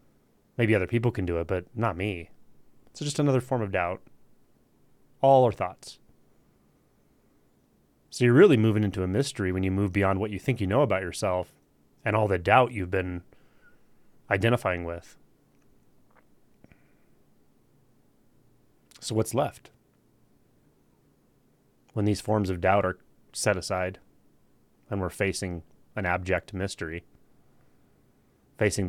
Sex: male